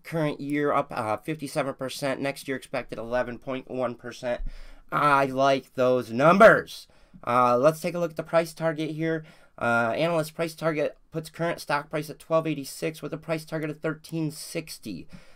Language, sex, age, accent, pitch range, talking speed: English, male, 30-49, American, 115-155 Hz, 150 wpm